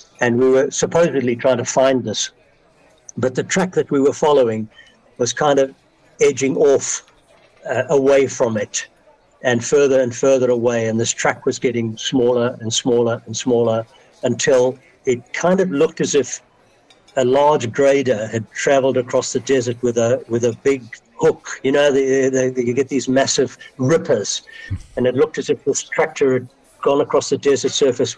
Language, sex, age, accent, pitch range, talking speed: English, male, 60-79, British, 120-140 Hz, 175 wpm